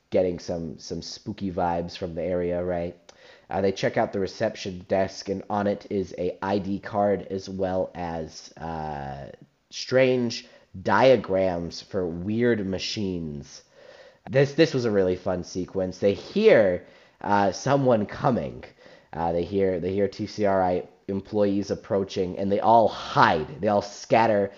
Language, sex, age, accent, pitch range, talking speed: English, male, 30-49, American, 95-135 Hz, 145 wpm